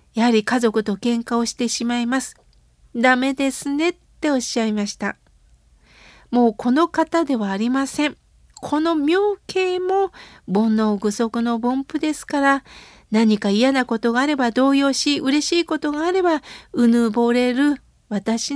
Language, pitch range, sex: Japanese, 235-305 Hz, female